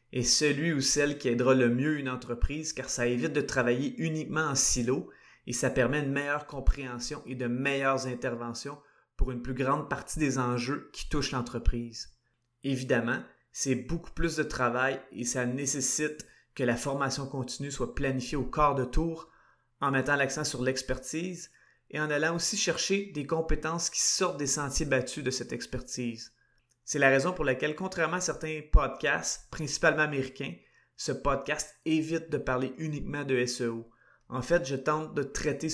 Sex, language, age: male, French, 30-49